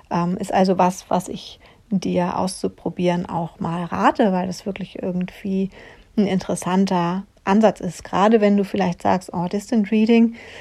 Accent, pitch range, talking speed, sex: German, 180-215 Hz, 155 wpm, female